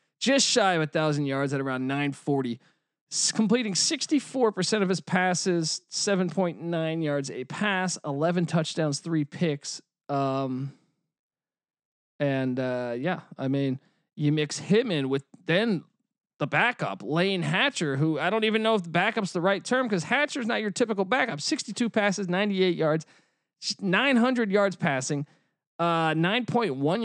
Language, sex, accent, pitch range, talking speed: English, male, American, 140-185 Hz, 140 wpm